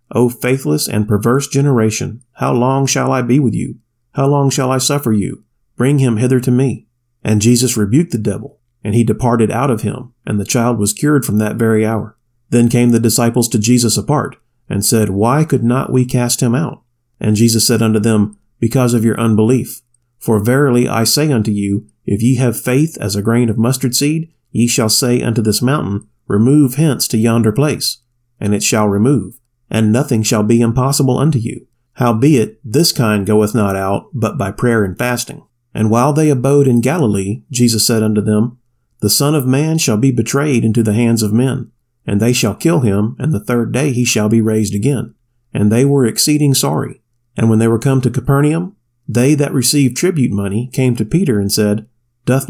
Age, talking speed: 40-59, 200 wpm